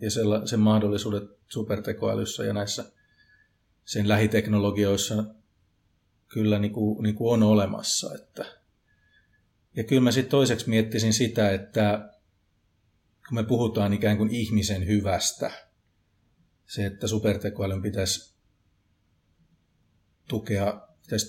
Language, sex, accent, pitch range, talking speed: Finnish, male, native, 100-110 Hz, 85 wpm